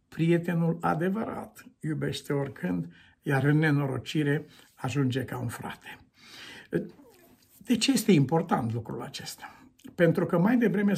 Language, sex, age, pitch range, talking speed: Romanian, male, 60-79, 140-210 Hz, 115 wpm